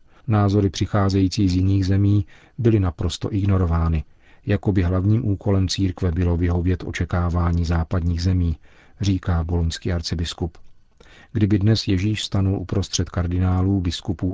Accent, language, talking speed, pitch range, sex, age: native, Czech, 115 wpm, 85-100 Hz, male, 40-59